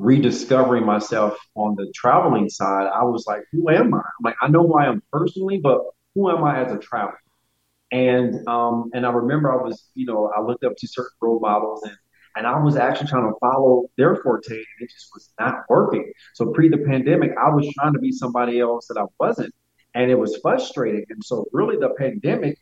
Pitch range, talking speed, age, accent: 110-145 Hz, 220 wpm, 30-49, American